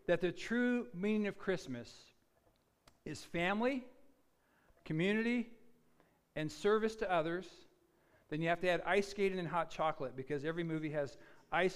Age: 50-69